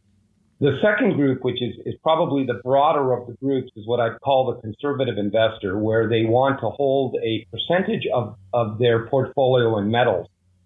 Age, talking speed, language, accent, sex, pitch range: 50-69, 180 wpm, English, American, male, 110-140 Hz